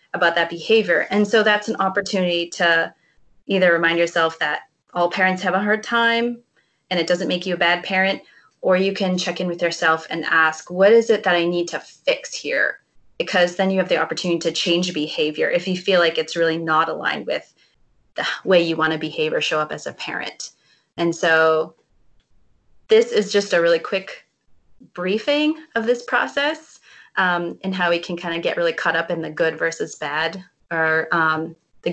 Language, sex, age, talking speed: English, female, 20-39, 200 wpm